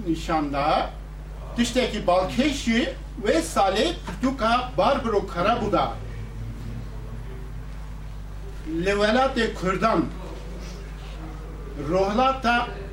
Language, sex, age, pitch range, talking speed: Turkish, male, 60-79, 150-210 Hz, 55 wpm